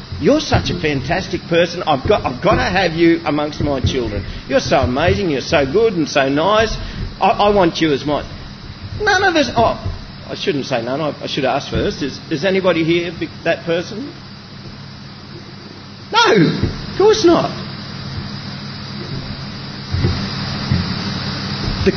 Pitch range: 125-200 Hz